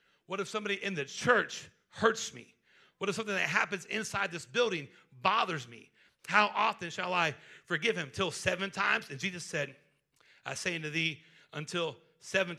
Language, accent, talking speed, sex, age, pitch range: English, American, 170 wpm, male, 40-59, 145-195 Hz